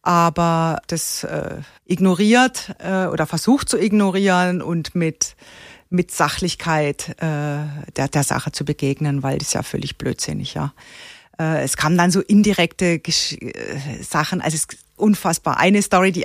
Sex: female